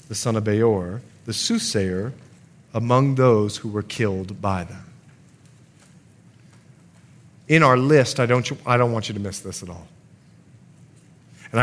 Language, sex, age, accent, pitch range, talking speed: English, male, 40-59, American, 105-140 Hz, 140 wpm